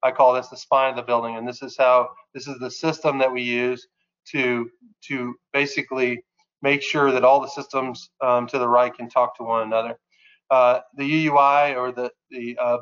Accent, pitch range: American, 125-145 Hz